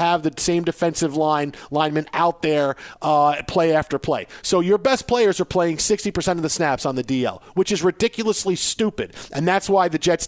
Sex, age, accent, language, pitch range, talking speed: male, 40-59, American, English, 170-225 Hz, 200 wpm